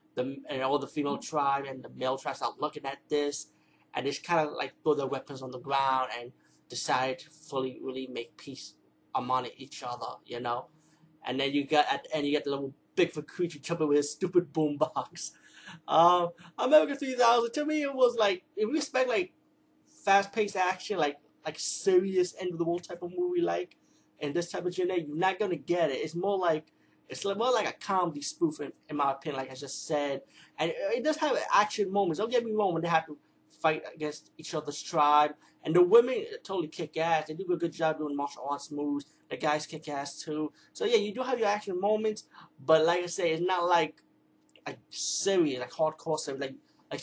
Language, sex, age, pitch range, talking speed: English, male, 30-49, 145-195 Hz, 220 wpm